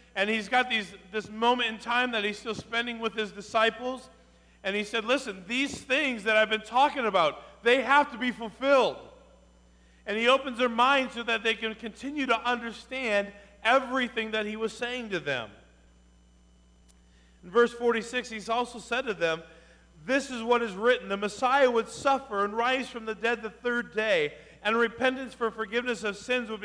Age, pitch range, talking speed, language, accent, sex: 40-59, 210-255 Hz, 185 wpm, English, American, male